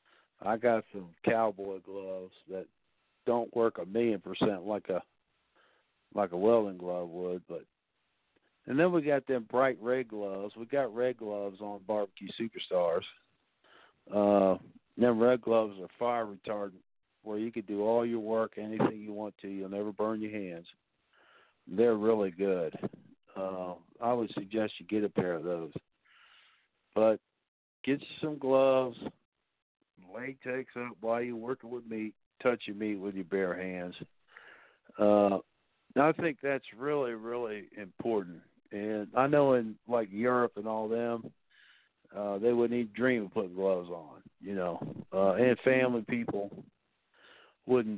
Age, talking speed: 50-69, 150 wpm